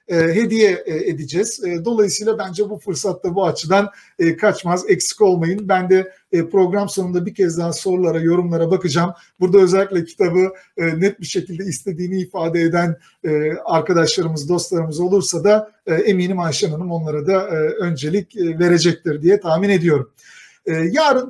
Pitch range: 165-205 Hz